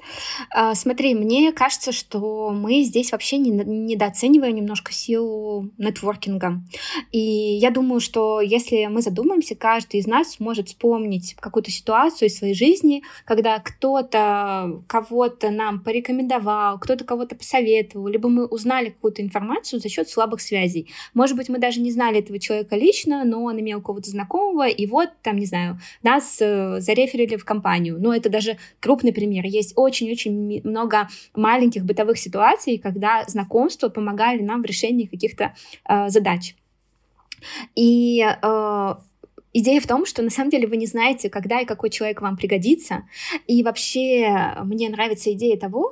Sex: female